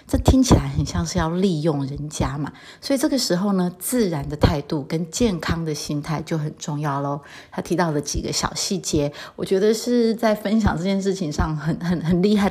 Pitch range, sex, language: 150-195 Hz, female, Chinese